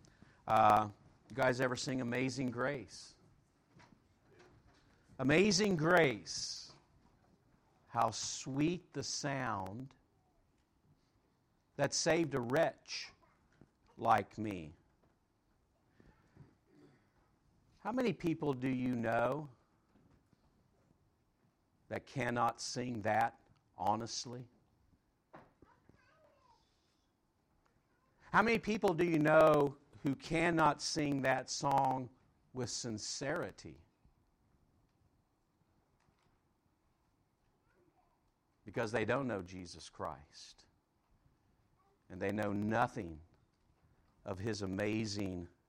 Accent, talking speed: American, 75 wpm